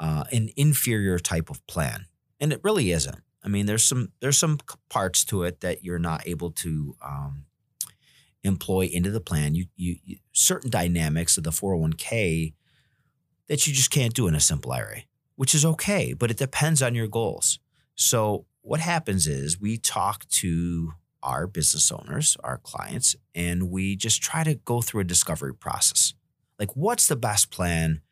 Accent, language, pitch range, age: American, English, 85-135 Hz, 40-59